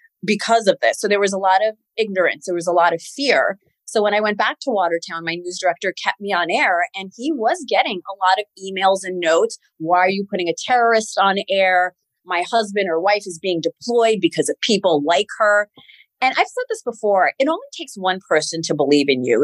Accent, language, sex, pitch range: American, English, female, 180-240 Hz